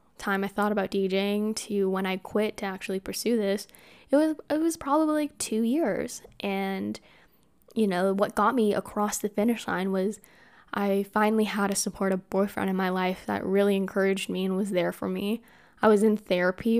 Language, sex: English, female